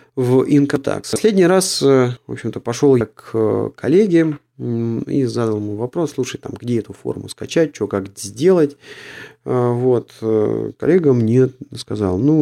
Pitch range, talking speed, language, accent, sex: 100-140 Hz, 135 wpm, Russian, native, male